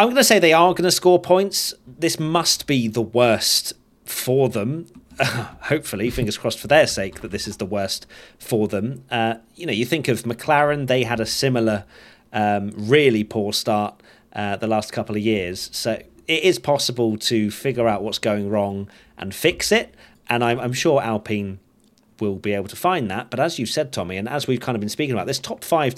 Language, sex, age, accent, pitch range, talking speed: English, male, 30-49, British, 105-135 Hz, 210 wpm